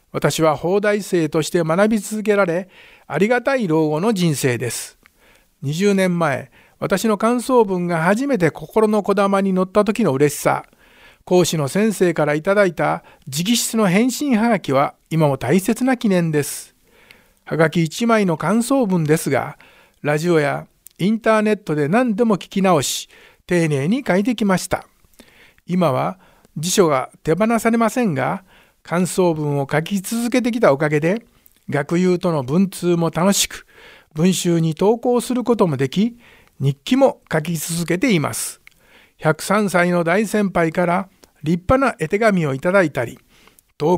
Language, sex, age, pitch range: Japanese, male, 60-79, 160-220 Hz